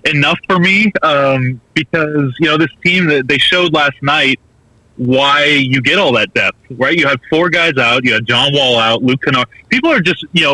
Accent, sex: American, male